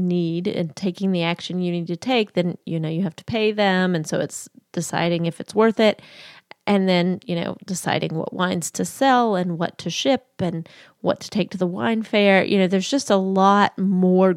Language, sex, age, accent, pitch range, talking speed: English, female, 30-49, American, 180-225 Hz, 220 wpm